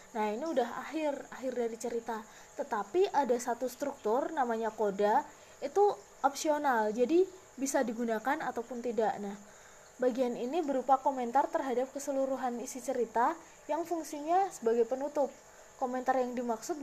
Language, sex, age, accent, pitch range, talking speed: Indonesian, female, 20-39, native, 235-295 Hz, 130 wpm